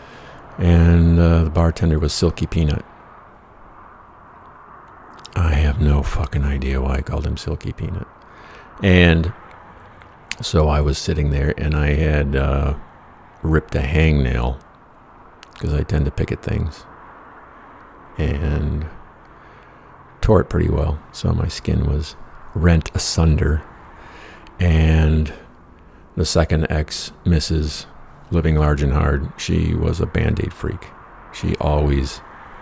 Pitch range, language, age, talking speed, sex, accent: 75-85 Hz, English, 50-69, 120 wpm, male, American